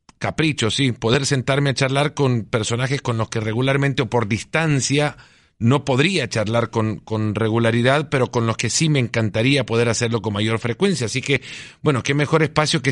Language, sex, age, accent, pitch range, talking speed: Spanish, male, 40-59, Mexican, 115-145 Hz, 185 wpm